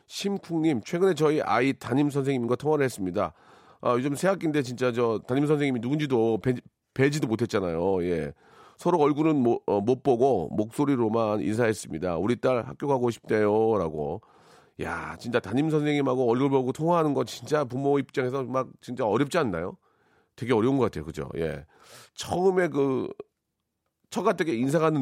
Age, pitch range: 40-59, 115-150 Hz